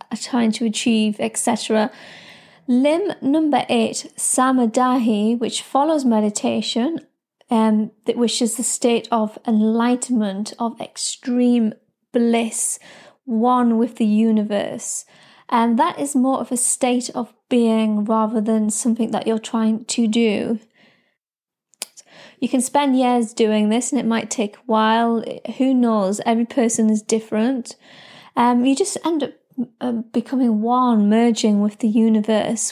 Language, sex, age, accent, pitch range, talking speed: English, female, 30-49, British, 220-255 Hz, 135 wpm